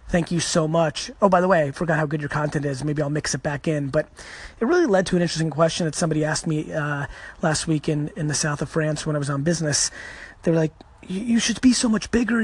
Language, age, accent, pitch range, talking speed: English, 30-49, American, 155-185 Hz, 270 wpm